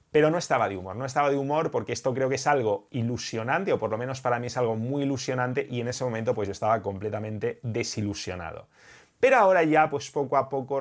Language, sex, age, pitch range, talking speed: English, male, 30-49, 120-145 Hz, 235 wpm